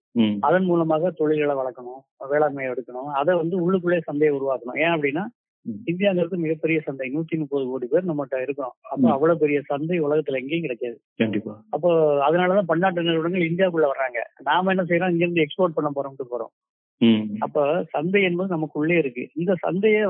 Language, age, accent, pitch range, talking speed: Tamil, 20-39, native, 135-170 Hz, 150 wpm